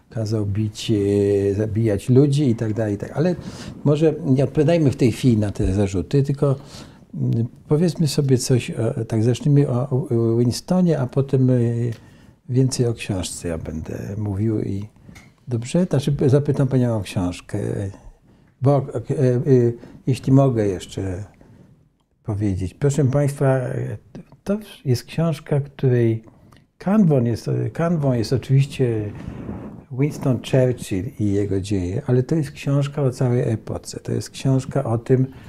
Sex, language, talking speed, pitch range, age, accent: male, Polish, 125 wpm, 110-135 Hz, 60-79, native